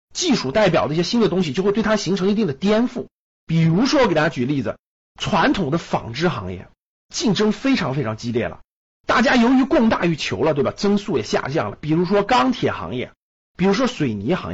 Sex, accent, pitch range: male, native, 160-225 Hz